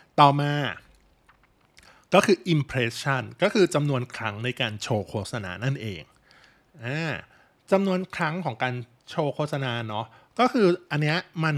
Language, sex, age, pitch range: Thai, male, 20-39, 115-150 Hz